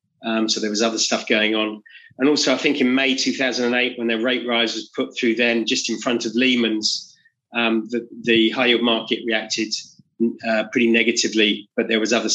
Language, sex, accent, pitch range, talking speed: English, male, British, 110-125 Hz, 205 wpm